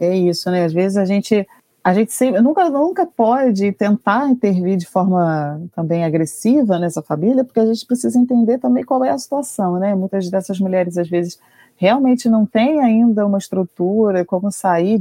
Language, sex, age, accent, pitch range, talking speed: Portuguese, female, 30-49, Brazilian, 170-215 Hz, 180 wpm